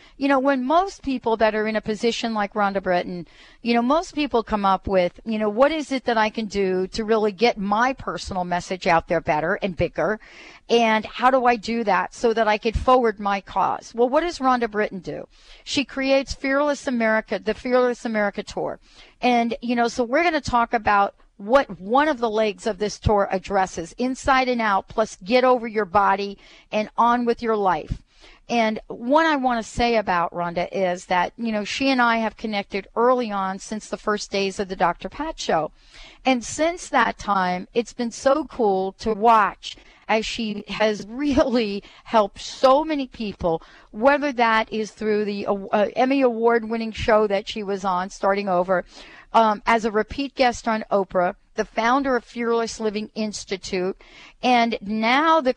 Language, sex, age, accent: English, female, 40-59, American